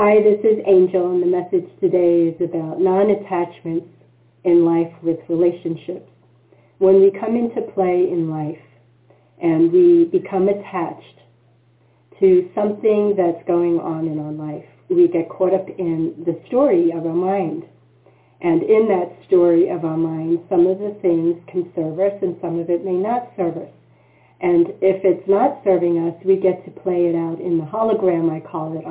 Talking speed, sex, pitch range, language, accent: 175 wpm, female, 170-200 Hz, English, American